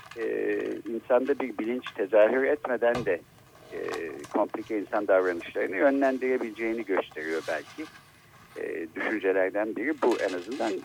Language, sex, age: Turkish, male, 60-79